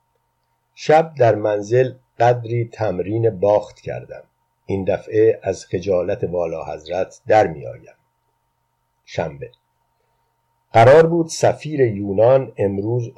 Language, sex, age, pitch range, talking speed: Persian, male, 50-69, 100-130 Hz, 100 wpm